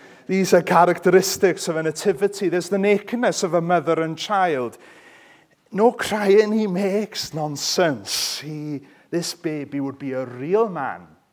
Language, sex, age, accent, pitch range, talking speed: English, male, 30-49, British, 165-210 Hz, 145 wpm